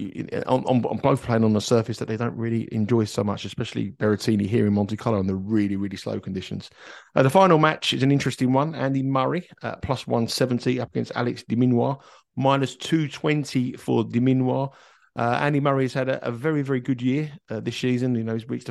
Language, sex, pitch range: English, male, 105-130 Hz